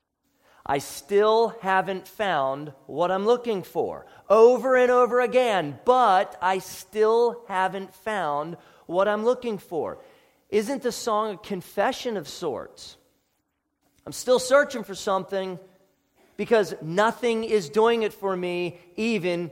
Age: 40-59